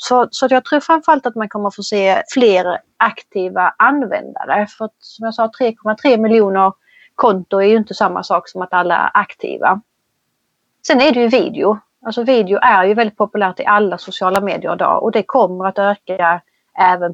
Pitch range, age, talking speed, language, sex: 190-230 Hz, 30-49, 185 wpm, Swedish, female